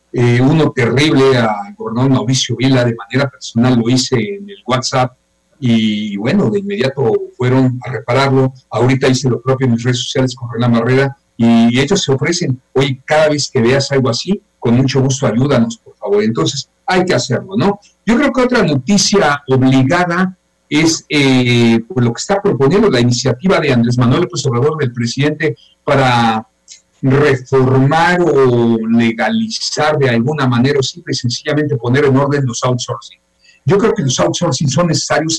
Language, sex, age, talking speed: Spanish, male, 50-69, 170 wpm